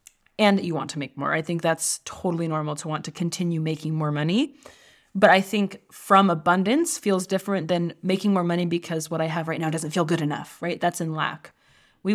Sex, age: female, 20-39